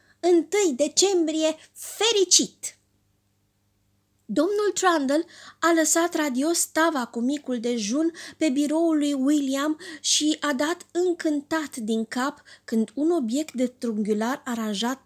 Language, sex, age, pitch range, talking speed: Romanian, female, 20-39, 225-305 Hz, 110 wpm